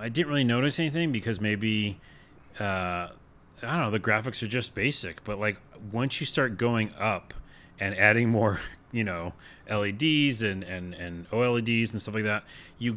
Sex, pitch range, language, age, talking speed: male, 95-120 Hz, English, 30-49, 175 wpm